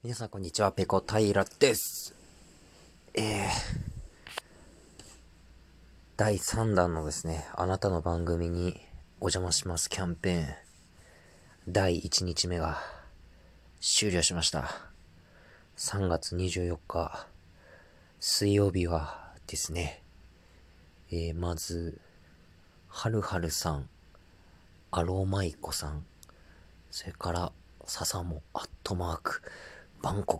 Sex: male